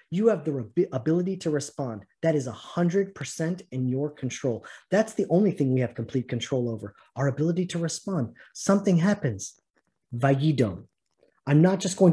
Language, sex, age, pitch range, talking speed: English, male, 30-49, 140-185 Hz, 155 wpm